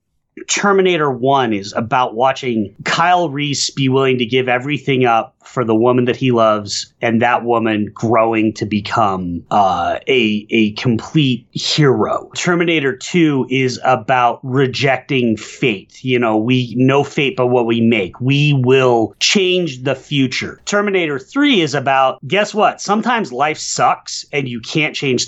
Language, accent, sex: English, American, male